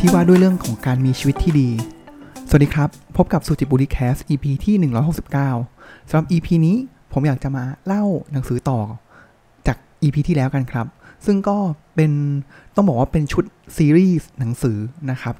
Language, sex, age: Thai, male, 20-39